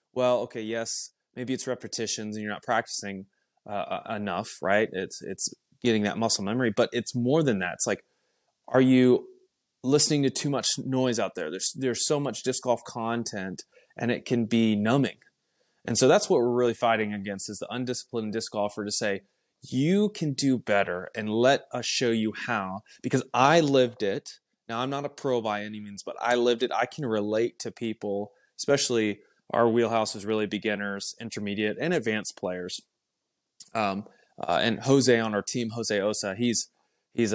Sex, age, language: male, 20-39, English